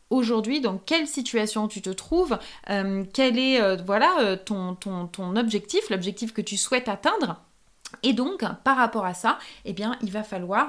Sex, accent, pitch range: female, French, 195-240 Hz